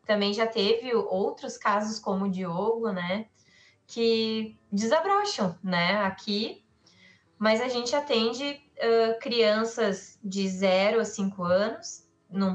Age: 20-39